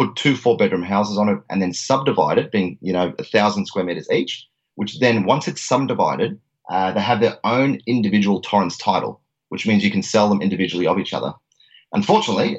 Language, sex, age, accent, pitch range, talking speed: English, male, 30-49, Australian, 95-115 Hz, 200 wpm